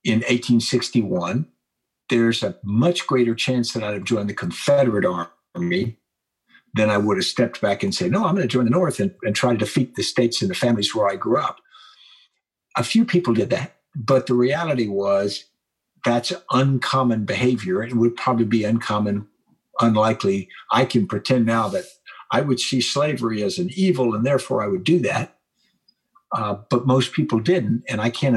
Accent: American